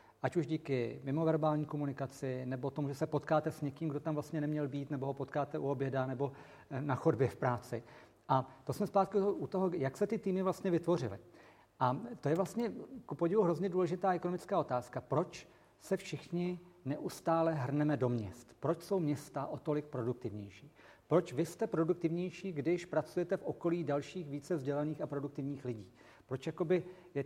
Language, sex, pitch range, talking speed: Czech, male, 140-175 Hz, 170 wpm